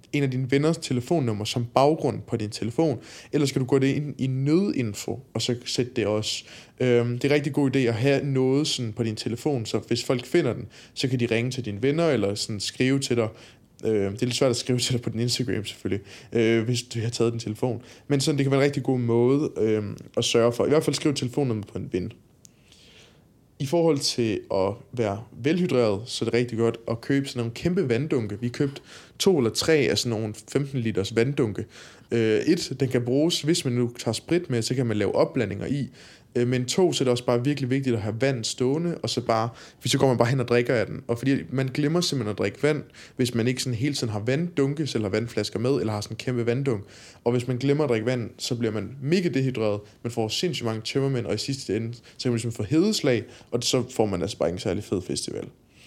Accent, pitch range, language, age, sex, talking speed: native, 115-140 Hz, Danish, 20-39, male, 240 wpm